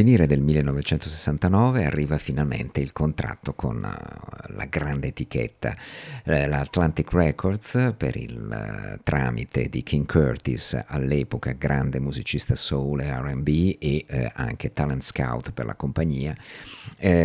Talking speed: 115 wpm